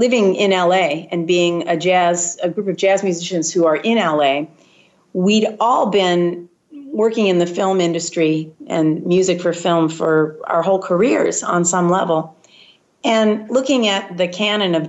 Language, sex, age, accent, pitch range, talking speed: English, female, 40-59, American, 160-195 Hz, 165 wpm